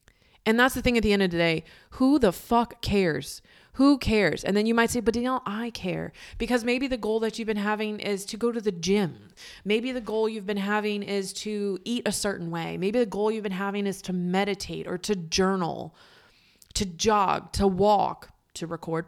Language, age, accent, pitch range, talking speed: English, 20-39, American, 165-210 Hz, 215 wpm